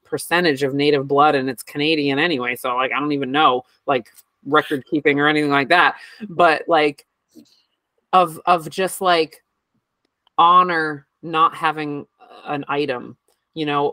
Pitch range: 135-160 Hz